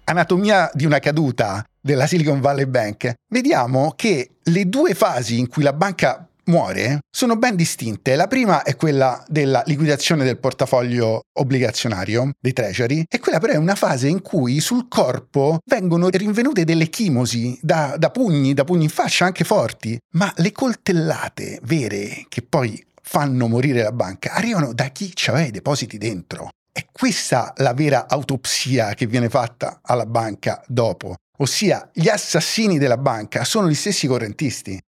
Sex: male